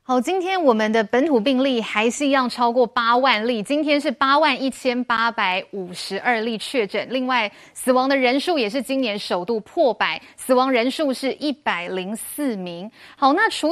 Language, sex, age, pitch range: Chinese, female, 20-39, 230-290 Hz